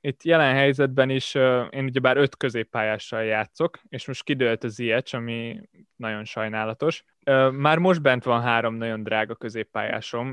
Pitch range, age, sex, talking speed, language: 115-135 Hz, 20-39, male, 155 wpm, Hungarian